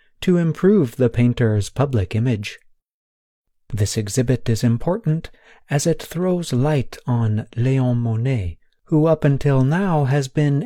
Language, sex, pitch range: Chinese, male, 110-150 Hz